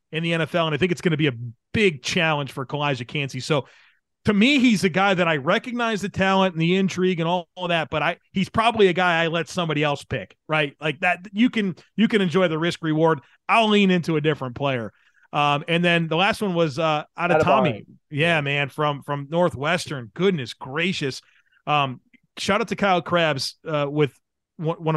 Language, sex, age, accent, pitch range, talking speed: English, male, 30-49, American, 145-185 Hz, 210 wpm